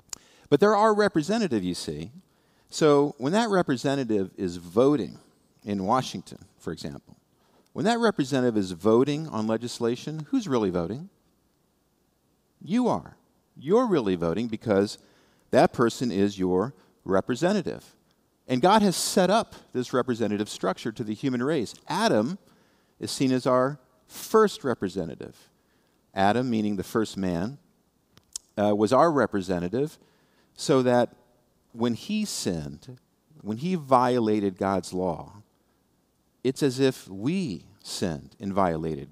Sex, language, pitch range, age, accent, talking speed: male, English, 100-145 Hz, 50-69, American, 125 wpm